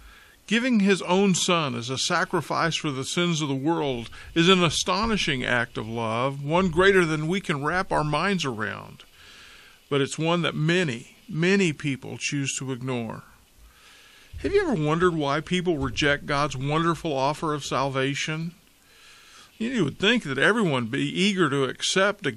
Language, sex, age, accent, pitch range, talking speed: English, male, 50-69, American, 135-185 Hz, 165 wpm